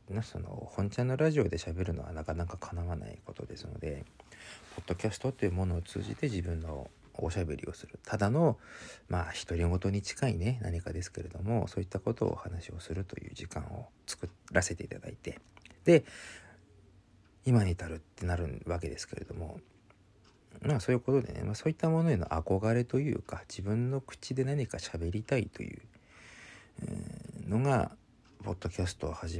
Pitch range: 85-115 Hz